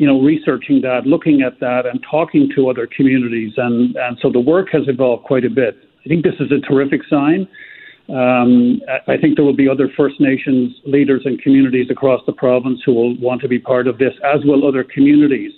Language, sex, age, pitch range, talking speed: English, male, 50-69, 125-150 Hz, 215 wpm